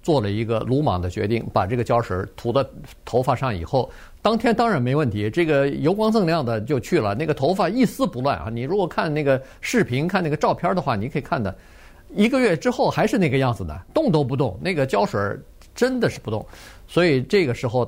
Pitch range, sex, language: 110-155 Hz, male, Chinese